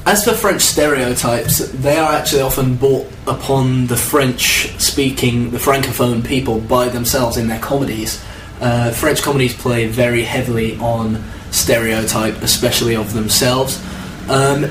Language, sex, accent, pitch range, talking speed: English, male, British, 115-135 Hz, 135 wpm